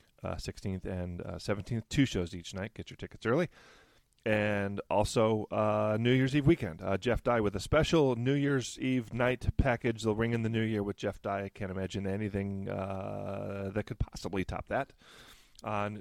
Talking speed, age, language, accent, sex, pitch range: 190 wpm, 30-49, English, American, male, 95-115 Hz